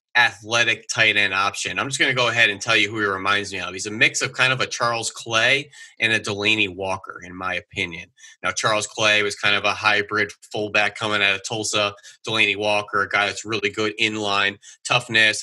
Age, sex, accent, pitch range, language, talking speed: 30-49, male, American, 100-120 Hz, English, 220 wpm